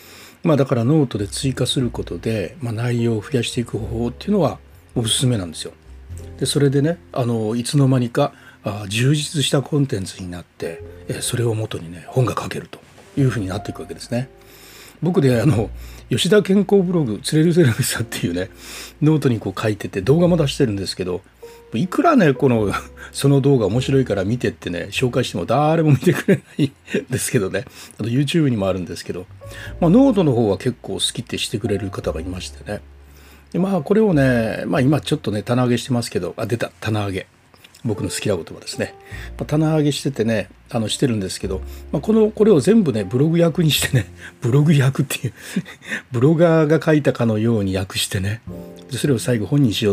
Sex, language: male, Japanese